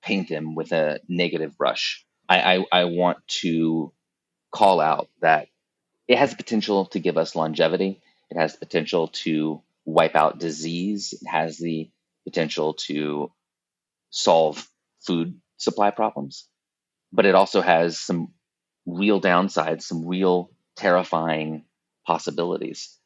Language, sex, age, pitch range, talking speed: English, male, 30-49, 80-95 Hz, 130 wpm